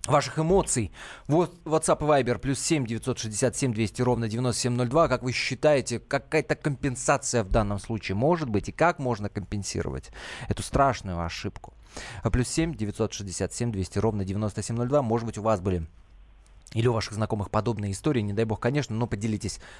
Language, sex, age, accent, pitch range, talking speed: Russian, male, 20-39, native, 105-135 Hz, 160 wpm